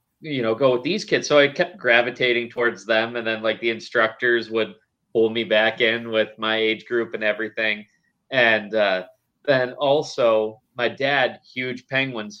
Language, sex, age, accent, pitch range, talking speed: English, male, 30-49, American, 110-135 Hz, 175 wpm